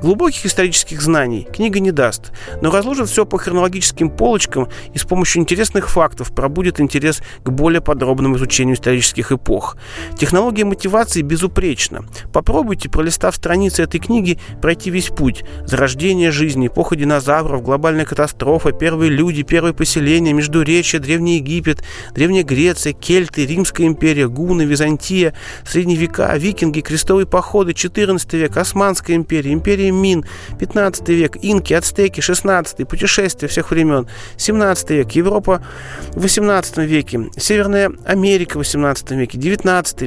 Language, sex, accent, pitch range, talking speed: Russian, male, native, 135-180 Hz, 130 wpm